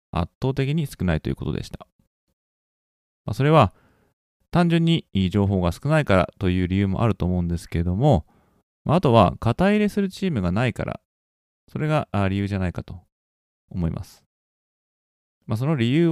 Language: Japanese